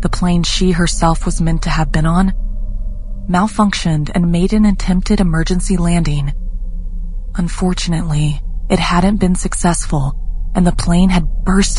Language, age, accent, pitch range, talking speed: English, 20-39, American, 145-185 Hz, 135 wpm